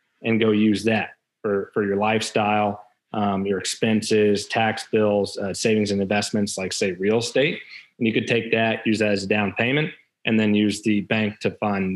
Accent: American